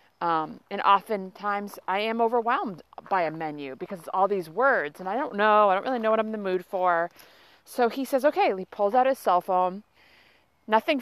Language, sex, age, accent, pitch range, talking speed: English, female, 30-49, American, 190-245 Hz, 210 wpm